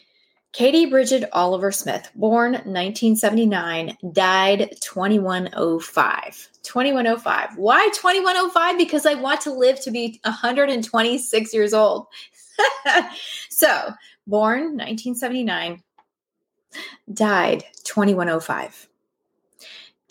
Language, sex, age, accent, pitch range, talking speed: English, female, 20-39, American, 185-240 Hz, 80 wpm